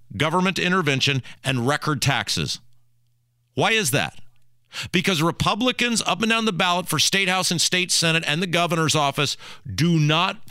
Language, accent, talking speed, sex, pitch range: English, American, 155 wpm, male, 130-190 Hz